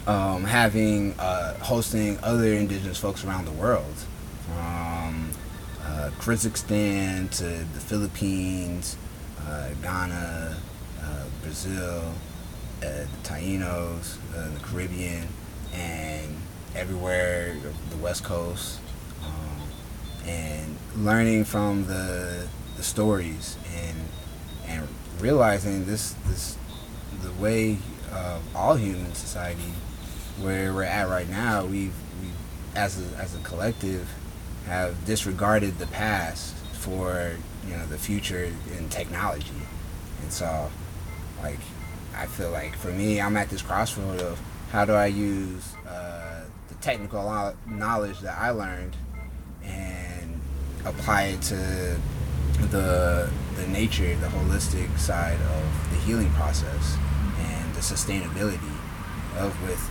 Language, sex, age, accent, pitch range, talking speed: English, male, 30-49, American, 80-100 Hz, 115 wpm